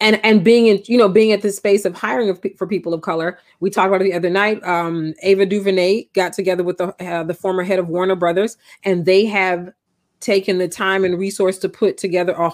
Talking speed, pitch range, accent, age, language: 235 wpm, 180-205 Hz, American, 30-49, English